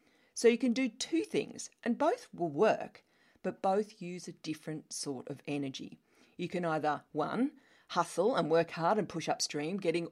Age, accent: 40-59, Australian